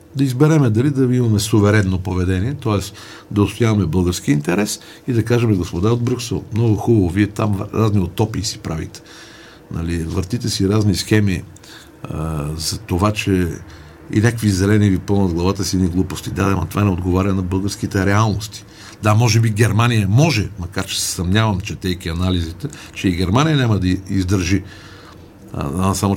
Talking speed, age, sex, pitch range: 165 wpm, 50-69, male, 90-110 Hz